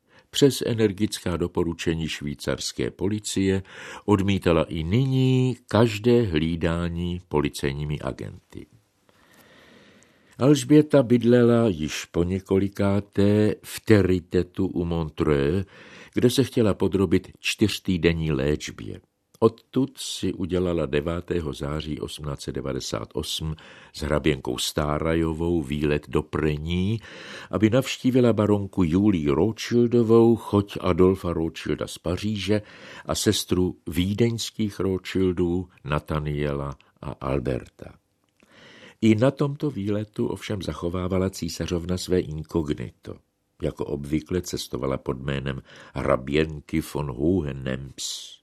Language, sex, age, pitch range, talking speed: Czech, male, 60-79, 75-105 Hz, 90 wpm